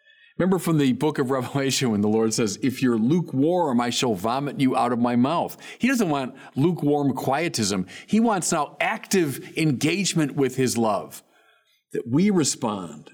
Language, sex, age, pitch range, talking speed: English, male, 50-69, 125-195 Hz, 170 wpm